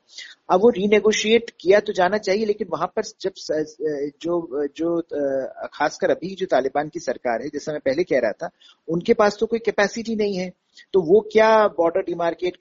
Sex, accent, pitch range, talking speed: male, native, 140-195 Hz, 190 wpm